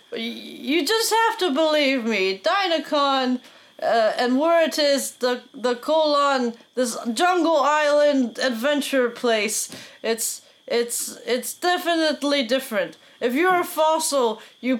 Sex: female